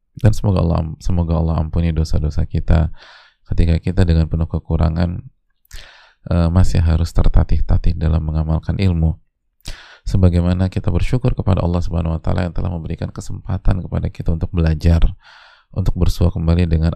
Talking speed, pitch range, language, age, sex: 140 wpm, 85-95 Hz, Indonesian, 20-39, male